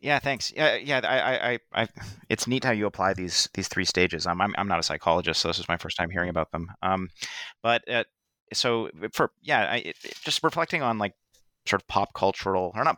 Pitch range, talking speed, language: 90-110 Hz, 225 wpm, English